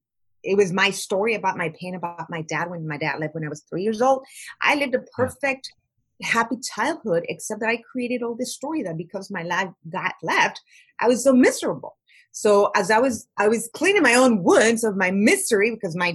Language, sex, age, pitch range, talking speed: English, female, 30-49, 180-245 Hz, 215 wpm